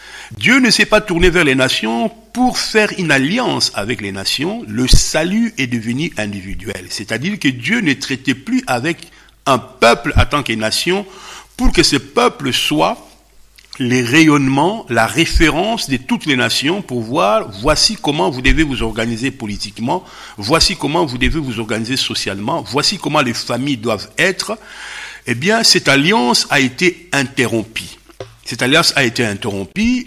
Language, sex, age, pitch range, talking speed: English, male, 60-79, 115-175 Hz, 160 wpm